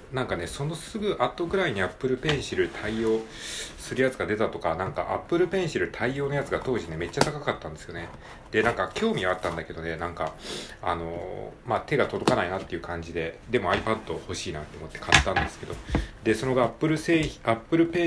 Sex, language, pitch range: male, Japanese, 85-135 Hz